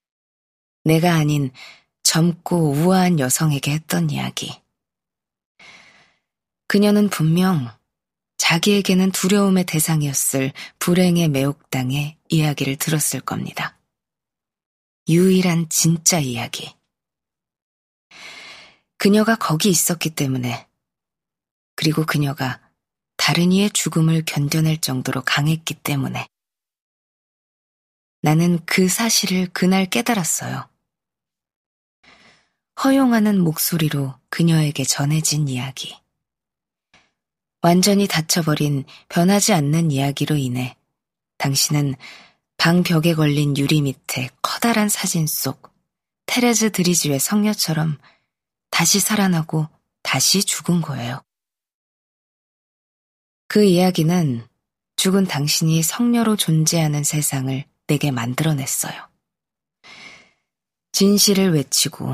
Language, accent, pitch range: Korean, native, 145-185 Hz